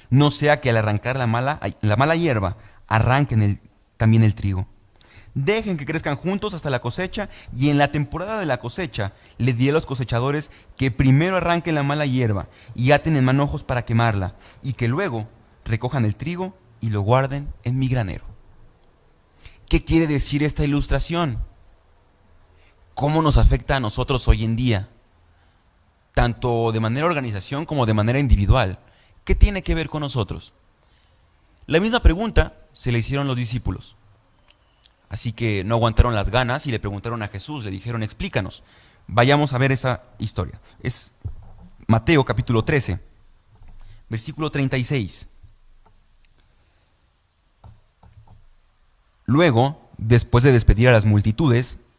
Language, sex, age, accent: Spanish, male, 30-49, Mexican